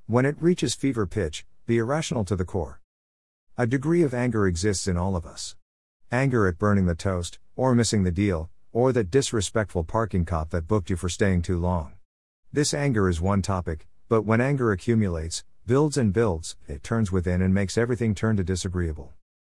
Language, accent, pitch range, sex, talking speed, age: English, American, 85-115 Hz, male, 185 wpm, 50-69